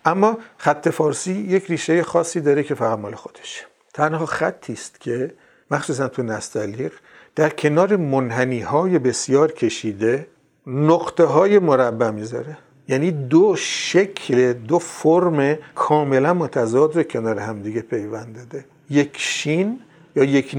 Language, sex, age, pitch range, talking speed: Persian, male, 50-69, 115-165 Hz, 120 wpm